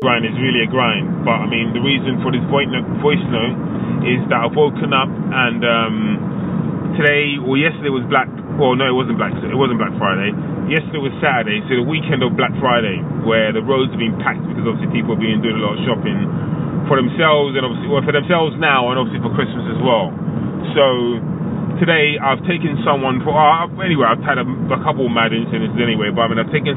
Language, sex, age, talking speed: English, male, 20-39, 215 wpm